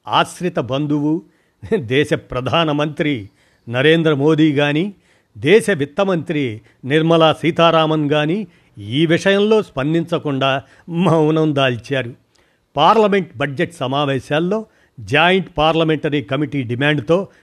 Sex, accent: male, native